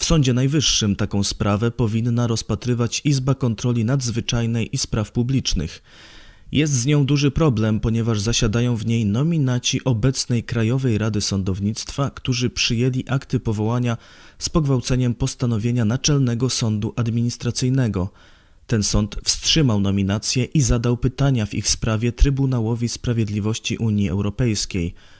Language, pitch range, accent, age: Polish, 100-130 Hz, native, 20-39